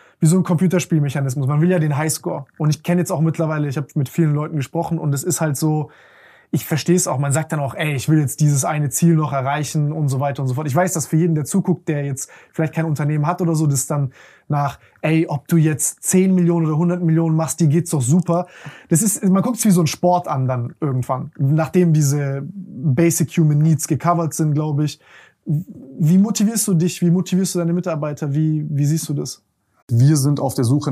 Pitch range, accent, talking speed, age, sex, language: 140-165 Hz, German, 235 wpm, 20-39, male, German